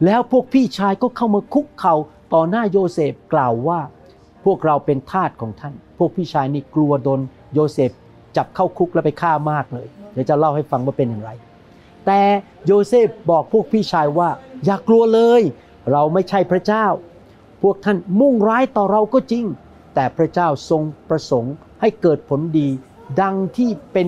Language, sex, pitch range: Thai, male, 135-185 Hz